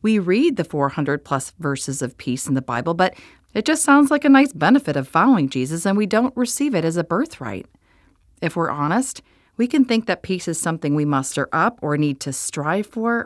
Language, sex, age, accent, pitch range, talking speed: English, female, 40-59, American, 150-215 Hz, 215 wpm